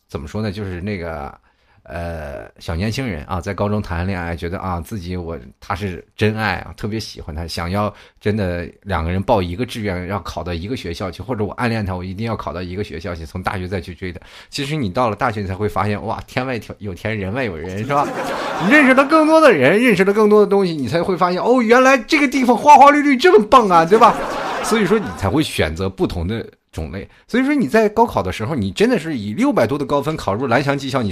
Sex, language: male, Chinese